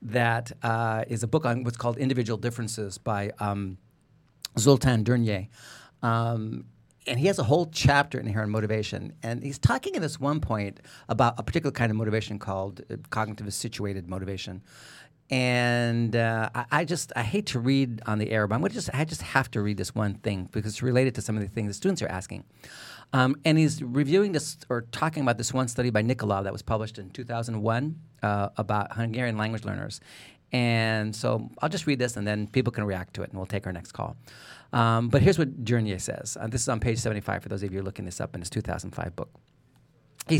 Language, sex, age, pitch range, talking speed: English, male, 40-59, 110-140 Hz, 215 wpm